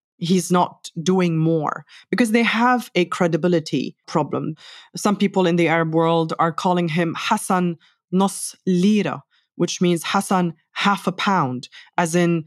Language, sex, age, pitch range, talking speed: English, female, 20-39, 160-200 Hz, 145 wpm